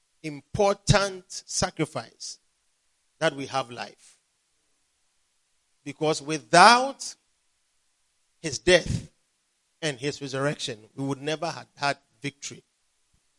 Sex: male